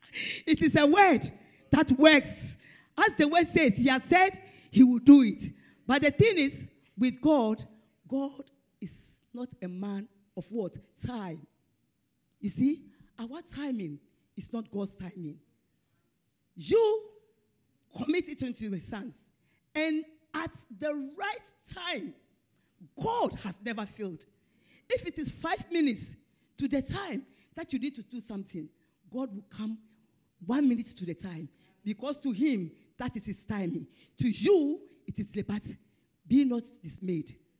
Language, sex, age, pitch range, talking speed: English, female, 40-59, 195-290 Hz, 145 wpm